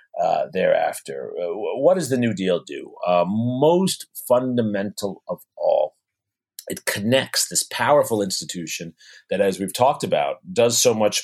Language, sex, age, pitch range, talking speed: English, male, 40-59, 90-120 Hz, 145 wpm